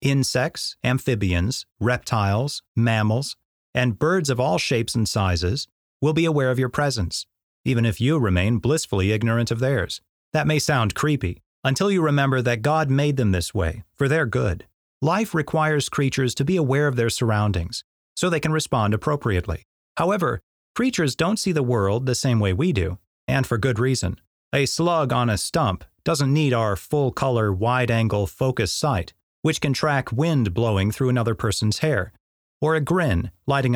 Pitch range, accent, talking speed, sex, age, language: 105-155 Hz, American, 170 wpm, male, 30-49, English